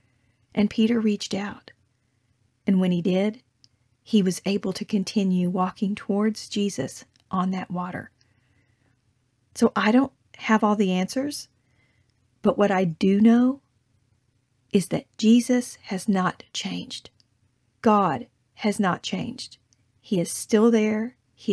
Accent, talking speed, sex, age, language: American, 130 wpm, female, 40-59, English